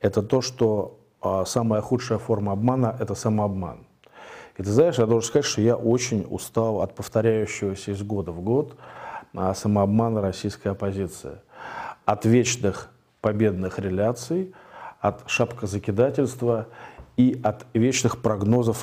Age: 40-59